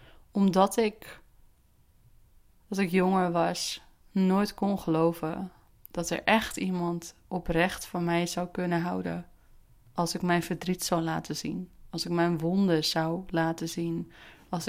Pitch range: 165-190 Hz